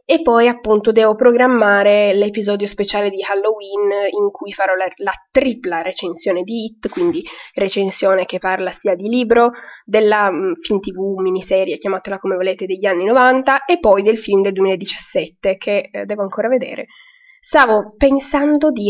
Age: 20-39